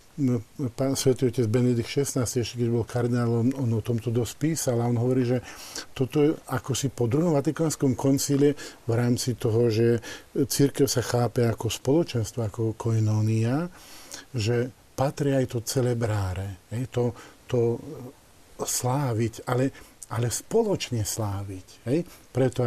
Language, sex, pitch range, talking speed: Slovak, male, 115-135 Hz, 125 wpm